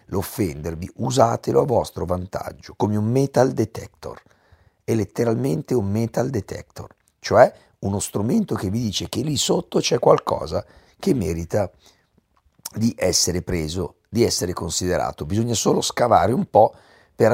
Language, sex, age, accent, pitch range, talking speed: Italian, male, 50-69, native, 90-115 Hz, 135 wpm